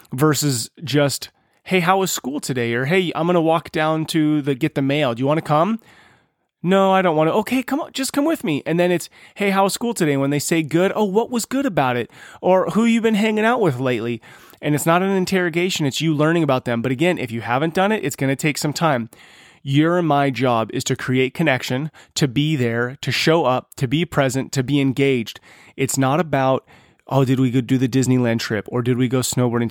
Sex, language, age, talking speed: male, English, 30-49, 245 wpm